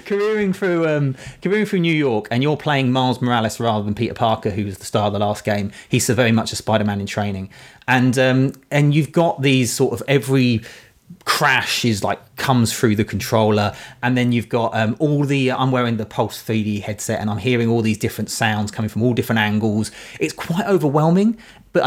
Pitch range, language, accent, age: 105-135 Hz, English, British, 30-49